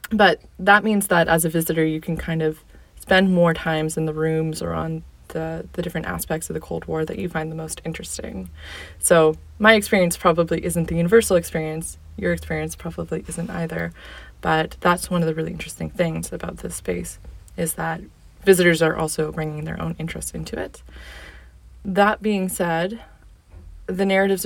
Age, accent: 20-39, American